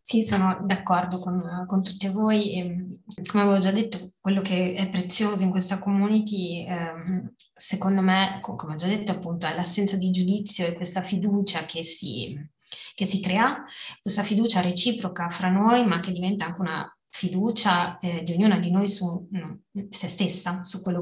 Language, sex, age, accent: Italian, female, 20-39, native